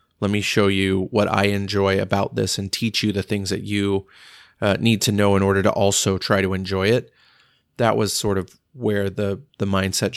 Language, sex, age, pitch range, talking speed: English, male, 30-49, 95-105 Hz, 210 wpm